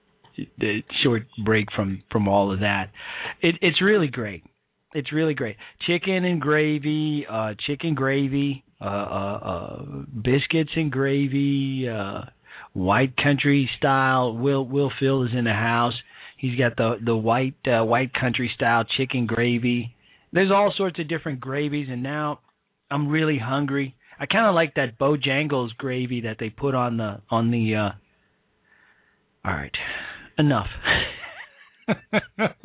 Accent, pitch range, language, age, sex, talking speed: American, 120-155 Hz, English, 40-59, male, 140 wpm